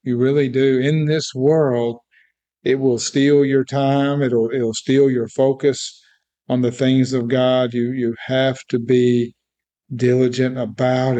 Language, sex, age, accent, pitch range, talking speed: English, male, 50-69, American, 120-130 Hz, 150 wpm